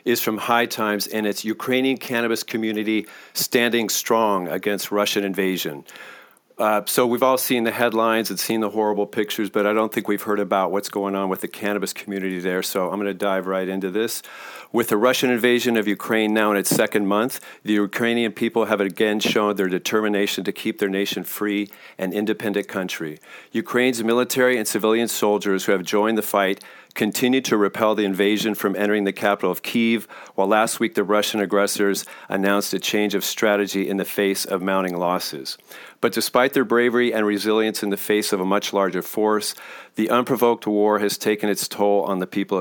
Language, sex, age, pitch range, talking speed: English, male, 40-59, 100-110 Hz, 195 wpm